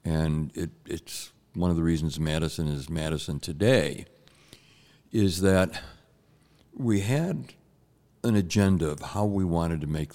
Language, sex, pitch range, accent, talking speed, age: English, male, 85-105 Hz, American, 130 wpm, 60-79